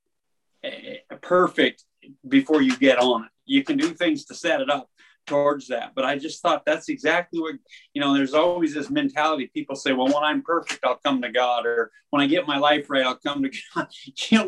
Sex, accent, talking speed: male, American, 210 wpm